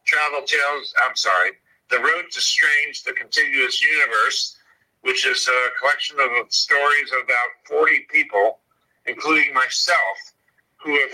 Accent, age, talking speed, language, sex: American, 60-79, 135 wpm, English, male